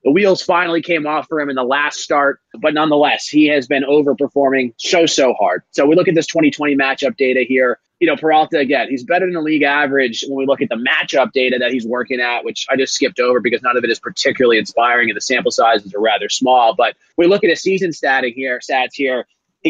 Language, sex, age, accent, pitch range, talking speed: English, male, 30-49, American, 125-165 Hz, 245 wpm